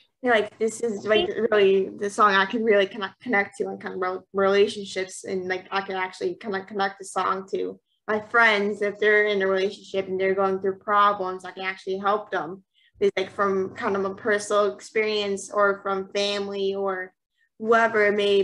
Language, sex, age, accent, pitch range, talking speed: English, female, 10-29, American, 195-215 Hz, 190 wpm